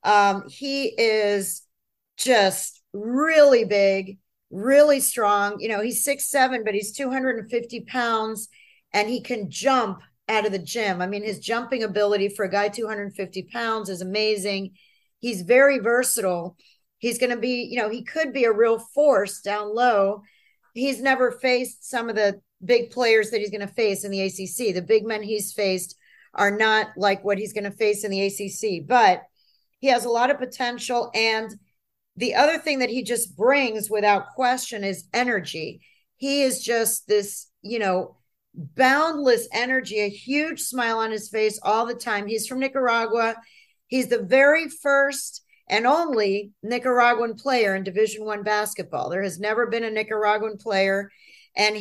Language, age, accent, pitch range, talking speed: English, 40-59, American, 205-245 Hz, 170 wpm